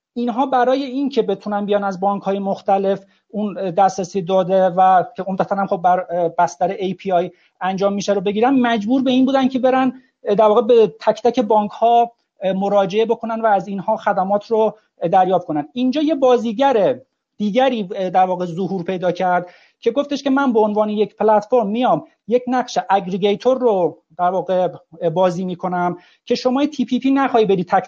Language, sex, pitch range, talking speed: Persian, male, 185-245 Hz, 170 wpm